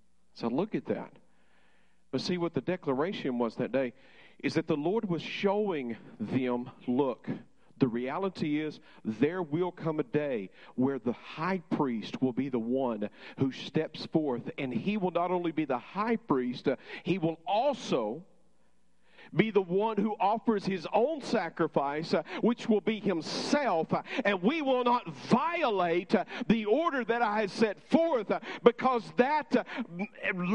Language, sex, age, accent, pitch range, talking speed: English, male, 50-69, American, 165-245 Hz, 160 wpm